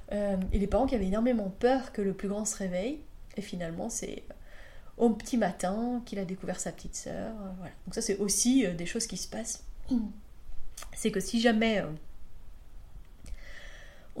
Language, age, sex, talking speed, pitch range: French, 30-49, female, 175 wpm, 195-235 Hz